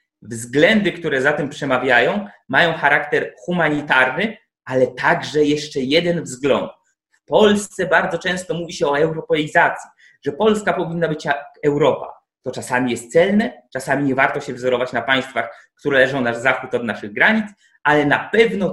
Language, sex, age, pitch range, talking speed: Polish, male, 20-39, 135-180 Hz, 155 wpm